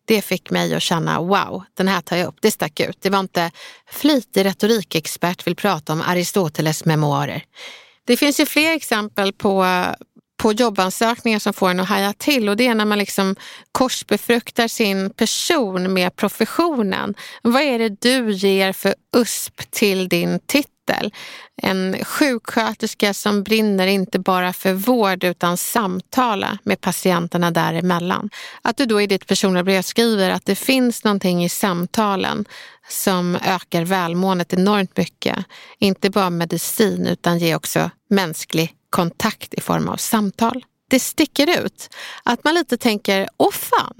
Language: Swedish